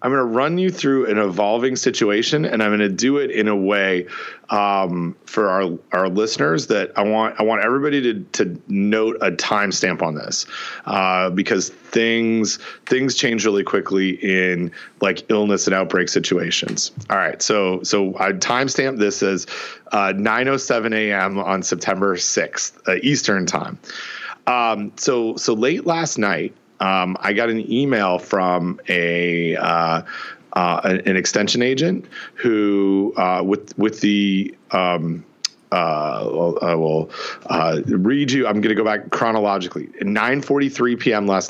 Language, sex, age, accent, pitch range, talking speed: English, male, 30-49, American, 95-115 Hz, 155 wpm